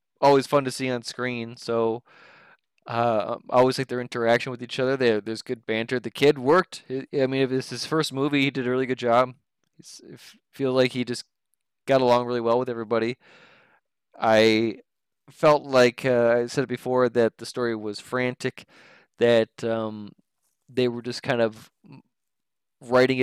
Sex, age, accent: male, 20-39, American